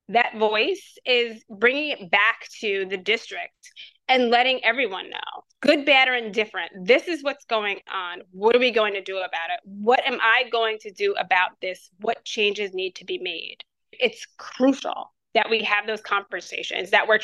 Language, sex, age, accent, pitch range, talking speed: English, female, 20-39, American, 205-245 Hz, 185 wpm